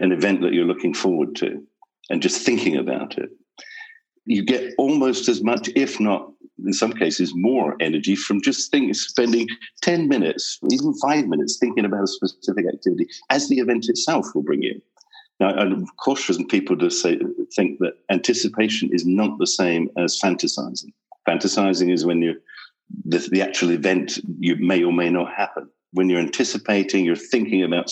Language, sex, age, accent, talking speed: English, male, 50-69, British, 170 wpm